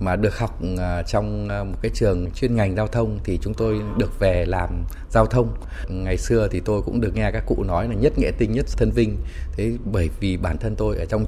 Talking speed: 235 wpm